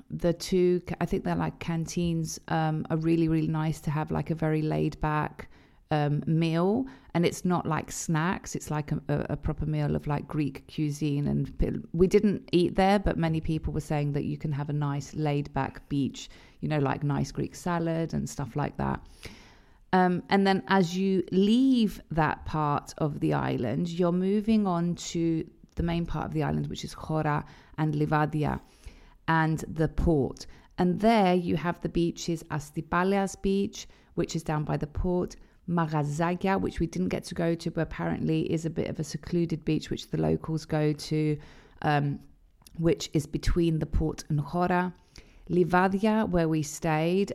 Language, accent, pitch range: Greek, British, 150-175 Hz